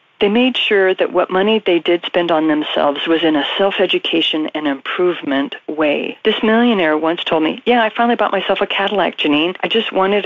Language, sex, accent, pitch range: English, female, American, 170-235 Hz